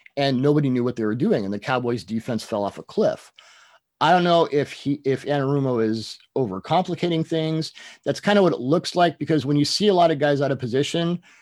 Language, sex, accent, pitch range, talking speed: English, male, American, 115-145 Hz, 225 wpm